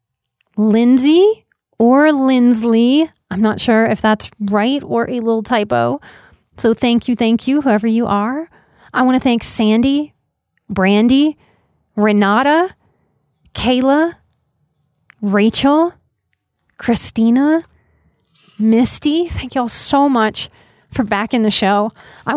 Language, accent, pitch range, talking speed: English, American, 210-265 Hz, 115 wpm